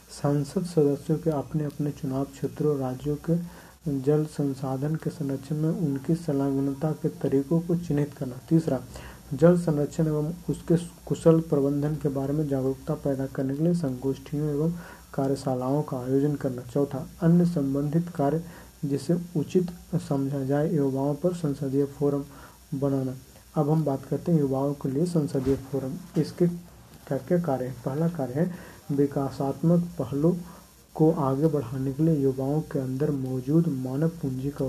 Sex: male